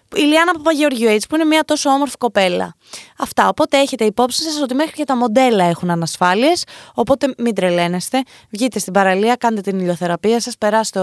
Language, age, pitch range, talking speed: Greek, 20-39, 190-270 Hz, 175 wpm